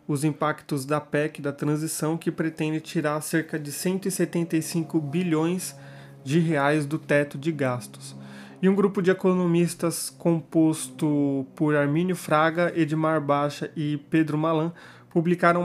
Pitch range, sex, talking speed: 145-170 Hz, male, 130 wpm